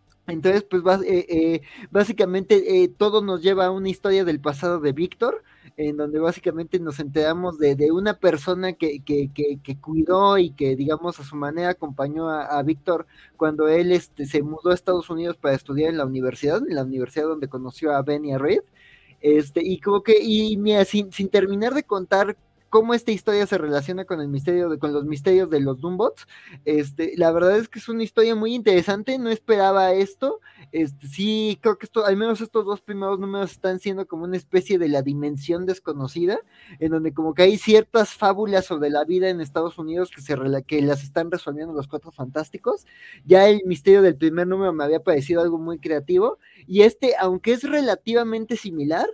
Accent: Mexican